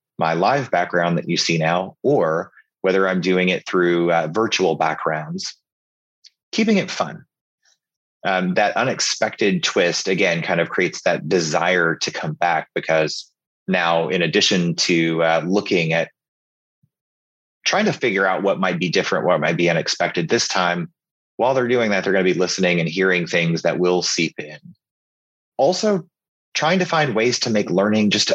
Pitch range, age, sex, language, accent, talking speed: 80-100 Hz, 30-49, male, English, American, 165 wpm